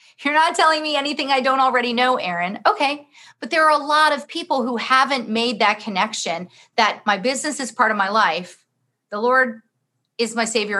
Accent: American